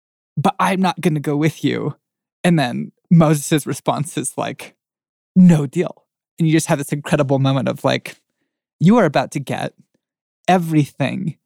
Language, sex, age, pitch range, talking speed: English, male, 20-39, 140-160 Hz, 160 wpm